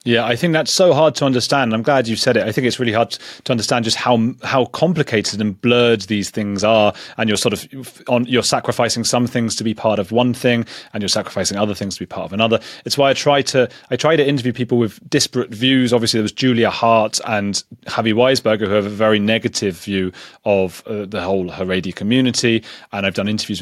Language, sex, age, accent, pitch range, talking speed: English, male, 30-49, British, 100-120 Hz, 235 wpm